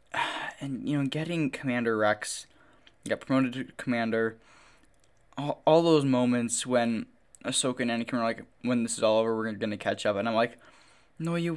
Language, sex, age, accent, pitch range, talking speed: English, male, 10-29, American, 115-135 Hz, 180 wpm